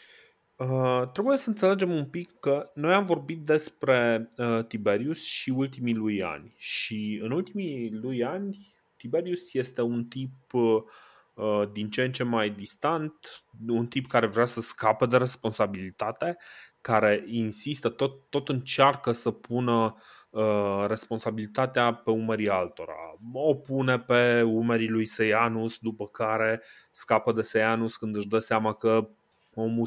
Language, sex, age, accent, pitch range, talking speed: Romanian, male, 20-39, native, 110-130 Hz, 135 wpm